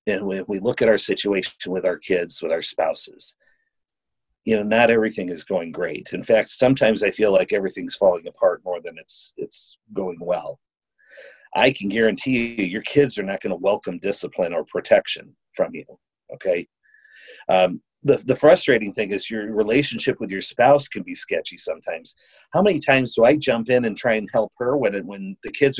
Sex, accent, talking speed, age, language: male, American, 195 wpm, 40-59, English